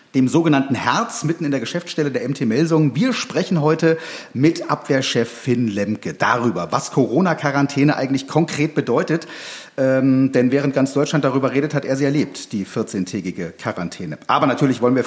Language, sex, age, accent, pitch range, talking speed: German, male, 40-59, German, 130-165 Hz, 165 wpm